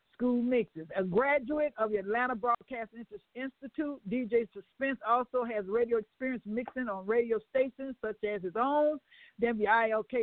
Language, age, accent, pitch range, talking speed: English, 60-79, American, 205-260 Hz, 135 wpm